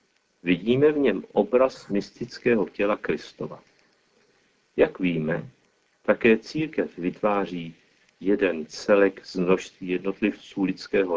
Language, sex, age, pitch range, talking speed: Czech, male, 50-69, 95-125 Hz, 95 wpm